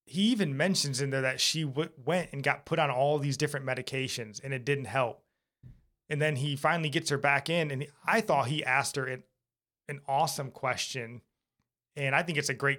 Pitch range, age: 125-150 Hz, 30-49